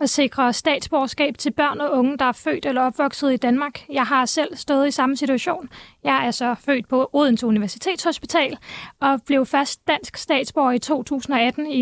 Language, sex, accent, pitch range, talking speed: Danish, female, native, 250-290 Hz, 180 wpm